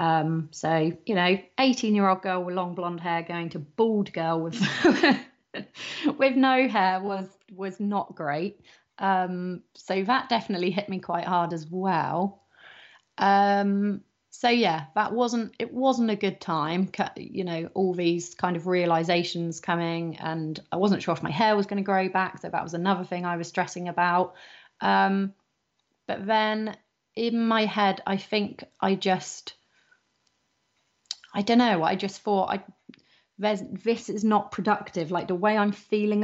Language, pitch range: English, 175-205 Hz